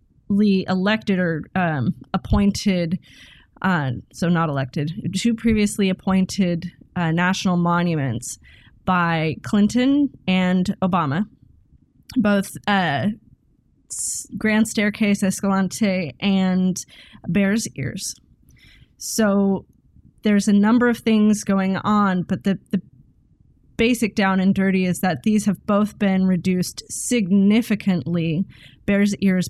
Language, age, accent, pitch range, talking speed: English, 20-39, American, 175-205 Hz, 105 wpm